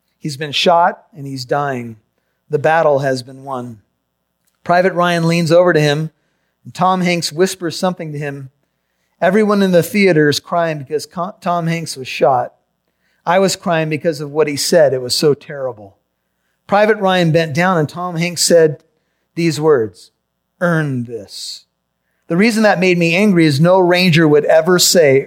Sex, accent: male, American